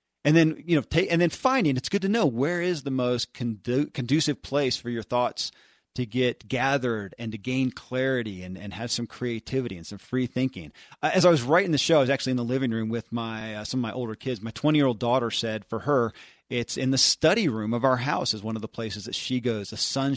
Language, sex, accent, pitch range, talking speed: English, male, American, 110-135 Hz, 250 wpm